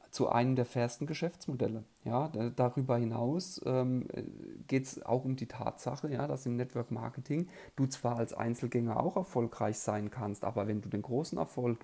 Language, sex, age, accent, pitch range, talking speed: German, male, 40-59, German, 115-145 Hz, 155 wpm